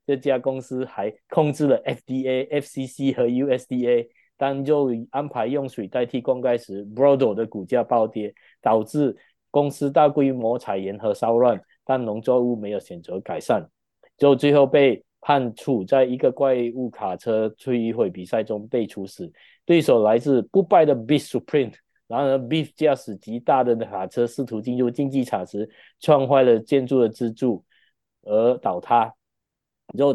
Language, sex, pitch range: Chinese, male, 110-135 Hz